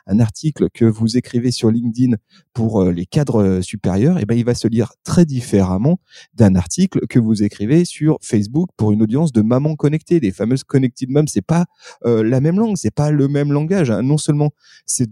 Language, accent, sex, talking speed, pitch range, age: French, French, male, 210 wpm, 105-145 Hz, 30-49